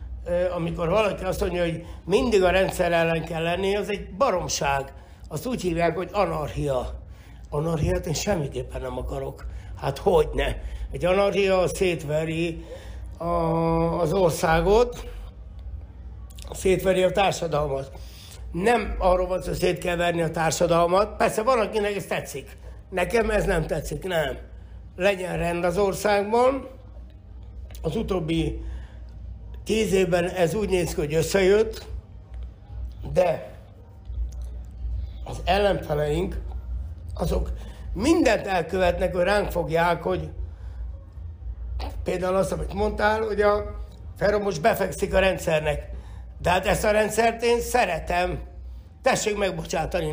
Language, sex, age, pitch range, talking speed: Hungarian, male, 60-79, 135-195 Hz, 115 wpm